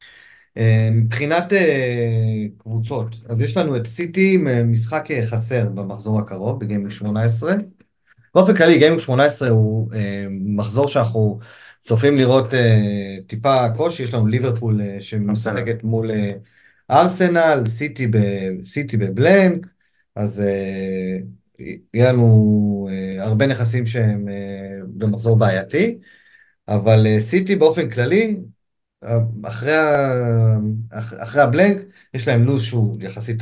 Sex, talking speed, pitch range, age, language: male, 100 wpm, 110-145 Hz, 30-49, Hebrew